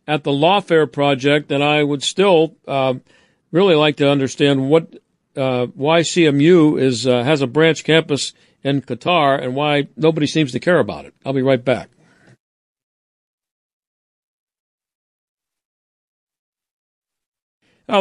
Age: 50-69